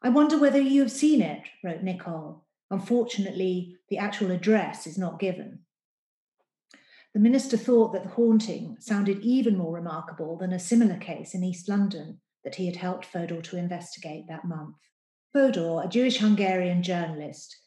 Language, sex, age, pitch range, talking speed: English, female, 40-59, 170-215 Hz, 155 wpm